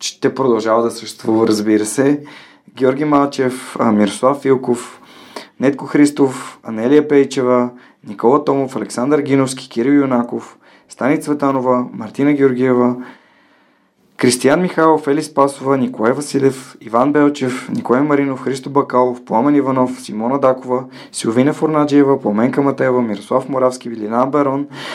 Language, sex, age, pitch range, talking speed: Bulgarian, male, 20-39, 120-145 Hz, 115 wpm